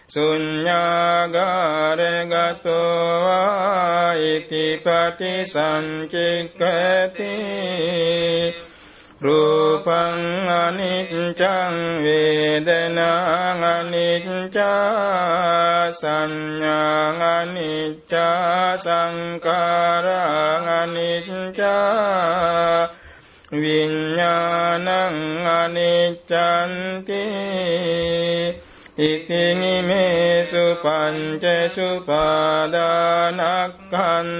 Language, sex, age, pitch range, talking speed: Vietnamese, male, 60-79, 170-180 Hz, 30 wpm